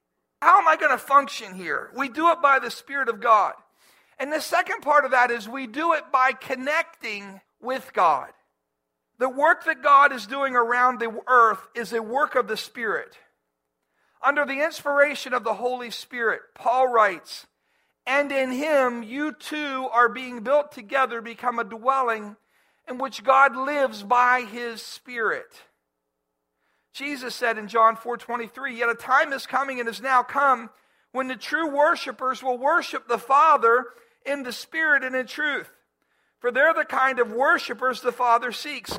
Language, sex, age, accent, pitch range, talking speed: English, male, 50-69, American, 230-280 Hz, 170 wpm